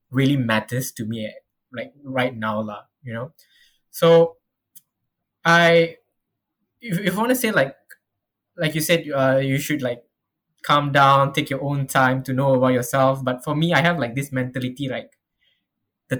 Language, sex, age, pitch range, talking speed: English, male, 10-29, 125-150 Hz, 165 wpm